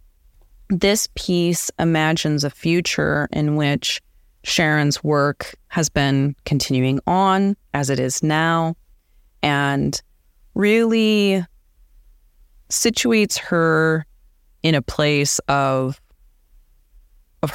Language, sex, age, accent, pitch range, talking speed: French, female, 30-49, American, 130-160 Hz, 90 wpm